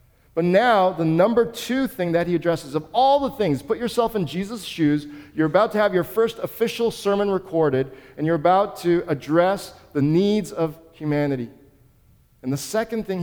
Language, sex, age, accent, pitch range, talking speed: English, male, 40-59, American, 140-210 Hz, 180 wpm